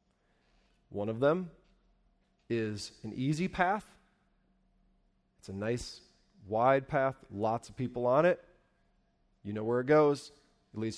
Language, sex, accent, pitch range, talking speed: English, male, American, 125-175 Hz, 130 wpm